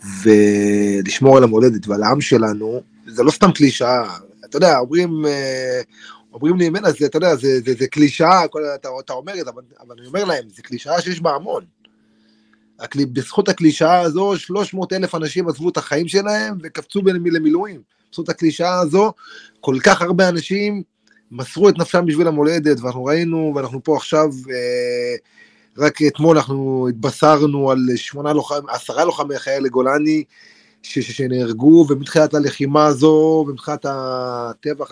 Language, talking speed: Hebrew, 150 wpm